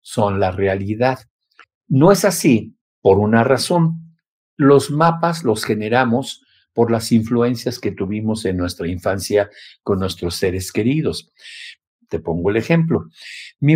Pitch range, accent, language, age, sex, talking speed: 100-130 Hz, Mexican, Spanish, 50-69, male, 130 wpm